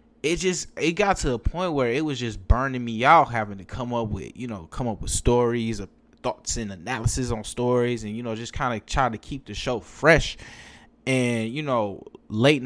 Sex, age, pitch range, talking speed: male, 20-39, 105-135 Hz, 225 wpm